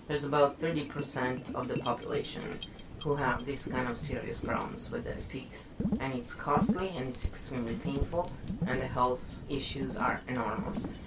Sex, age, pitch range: female, 30-49, 125-160 Hz